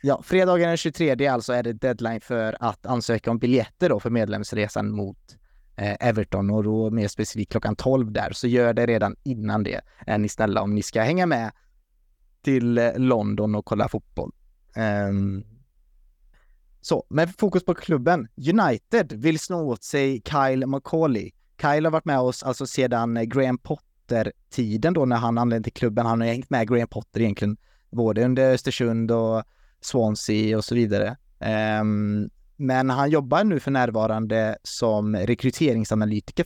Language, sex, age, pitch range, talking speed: Swedish, male, 20-39, 105-130 Hz, 165 wpm